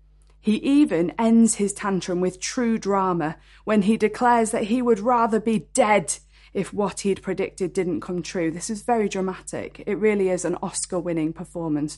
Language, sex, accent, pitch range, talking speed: English, female, British, 170-215 Hz, 170 wpm